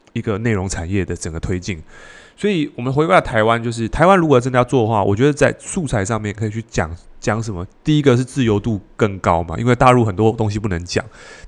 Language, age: Chinese, 20-39